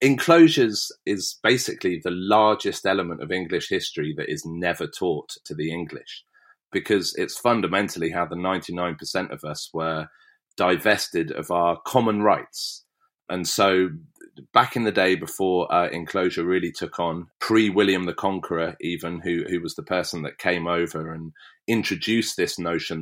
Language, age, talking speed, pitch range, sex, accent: English, 30-49, 150 wpm, 80-105 Hz, male, British